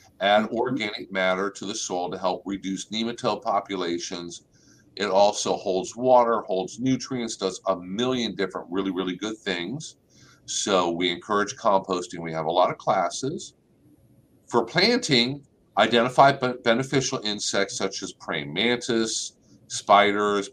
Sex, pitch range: male, 95-120 Hz